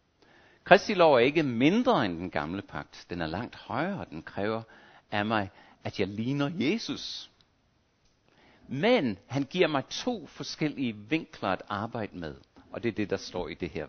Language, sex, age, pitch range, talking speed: Danish, male, 60-79, 105-145 Hz, 175 wpm